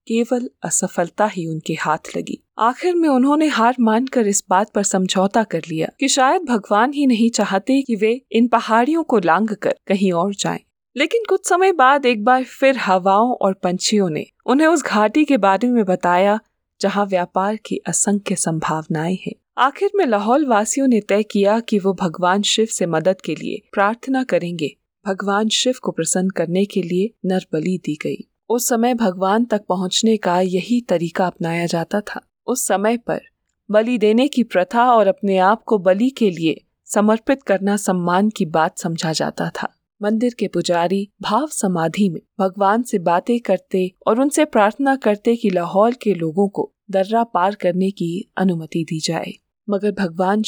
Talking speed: 170 wpm